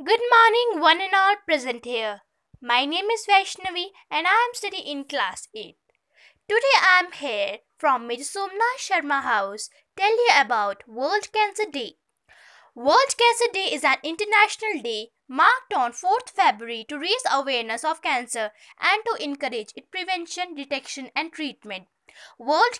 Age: 20-39